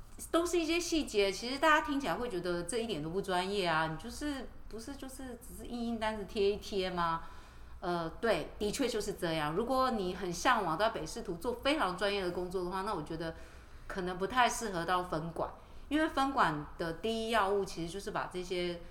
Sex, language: female, Chinese